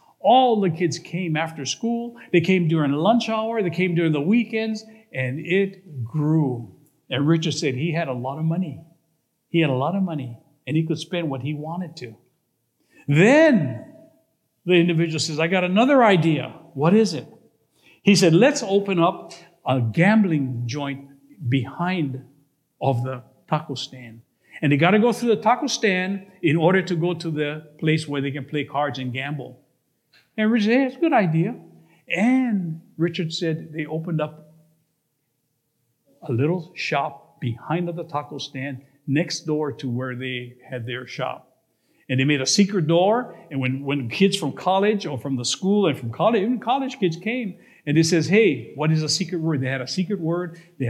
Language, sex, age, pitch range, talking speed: English, male, 50-69, 130-180 Hz, 185 wpm